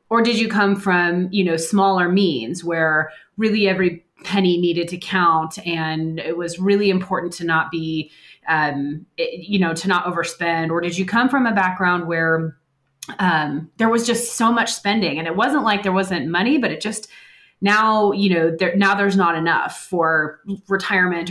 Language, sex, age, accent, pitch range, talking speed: English, female, 30-49, American, 170-205 Hz, 180 wpm